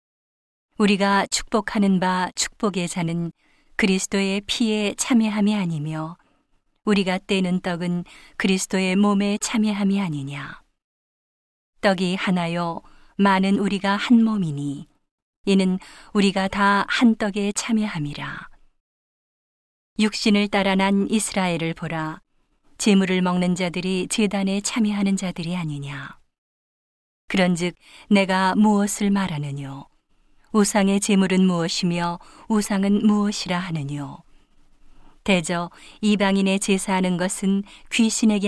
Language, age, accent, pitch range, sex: Korean, 40-59, native, 175-205 Hz, female